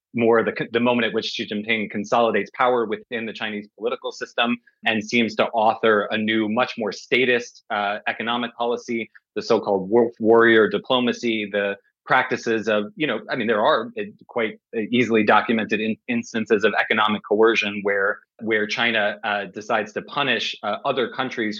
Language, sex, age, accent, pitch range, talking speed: English, male, 20-39, American, 105-120 Hz, 160 wpm